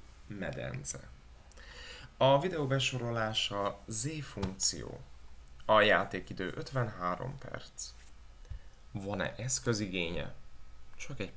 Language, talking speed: Hungarian, 70 wpm